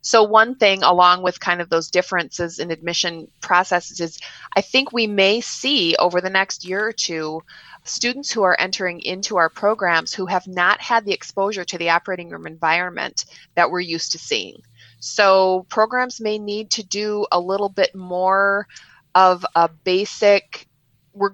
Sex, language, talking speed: female, English, 170 wpm